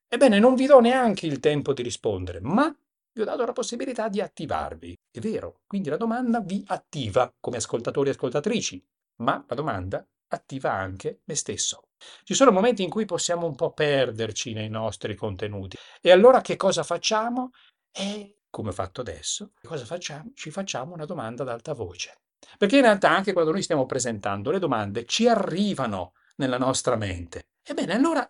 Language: Italian